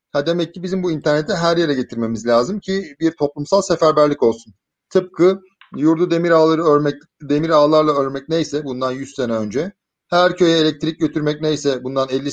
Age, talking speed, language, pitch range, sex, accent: 40-59, 170 wpm, Turkish, 135-170 Hz, male, native